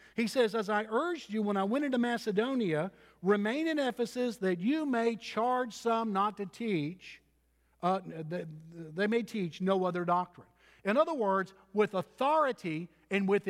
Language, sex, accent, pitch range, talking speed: English, male, American, 180-230 Hz, 165 wpm